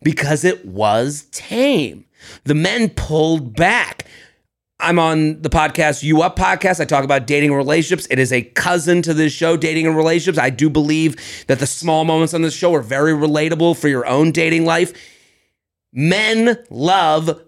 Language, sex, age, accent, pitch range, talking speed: English, male, 30-49, American, 150-180 Hz, 175 wpm